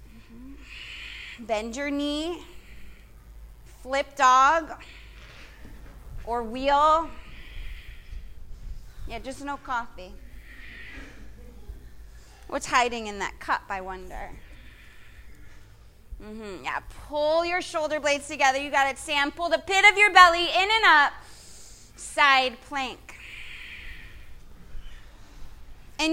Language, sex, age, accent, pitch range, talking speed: English, female, 30-49, American, 235-320 Hz, 95 wpm